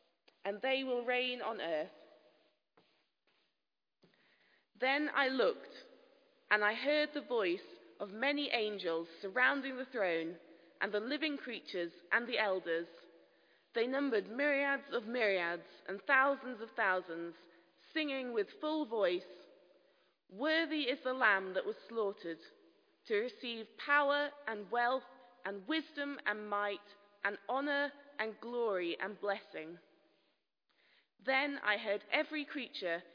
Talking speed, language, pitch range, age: 120 wpm, English, 190-285 Hz, 20-39